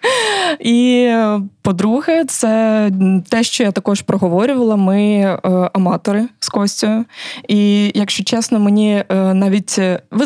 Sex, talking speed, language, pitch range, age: female, 115 wpm, Ukrainian, 195-230 Hz, 20-39